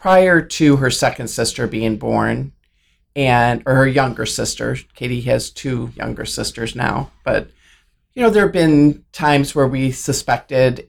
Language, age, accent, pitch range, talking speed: English, 40-59, American, 125-150 Hz, 150 wpm